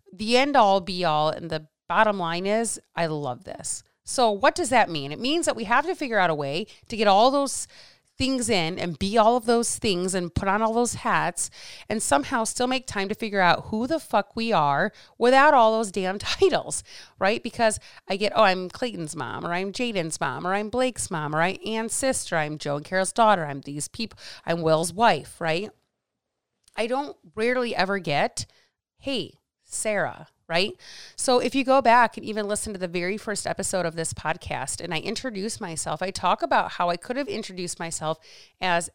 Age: 30-49